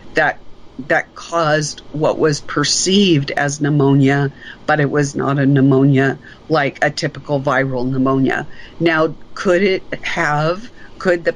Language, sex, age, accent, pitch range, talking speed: English, female, 50-69, American, 140-165 Hz, 130 wpm